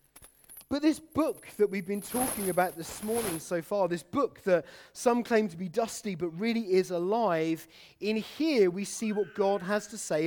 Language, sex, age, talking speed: English, male, 30-49, 195 wpm